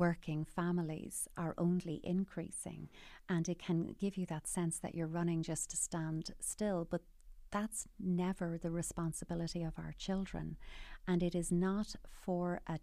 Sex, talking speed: female, 155 wpm